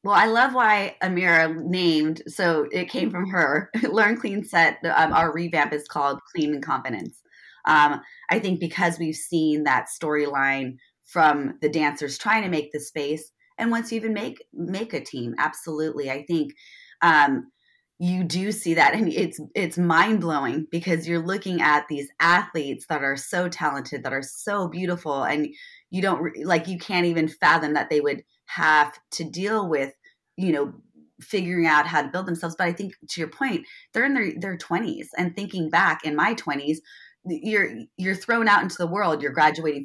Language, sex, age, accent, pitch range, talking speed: English, female, 20-39, American, 150-195 Hz, 185 wpm